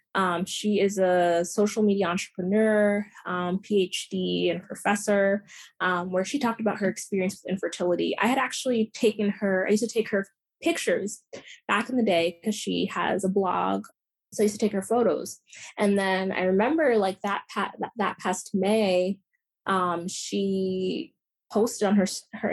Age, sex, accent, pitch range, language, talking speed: 20-39, female, American, 180-210 Hz, English, 170 wpm